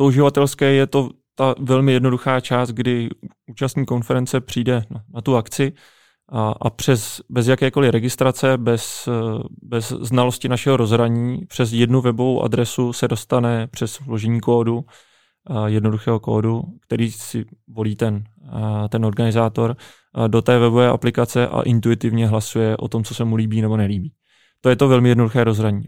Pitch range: 115-125 Hz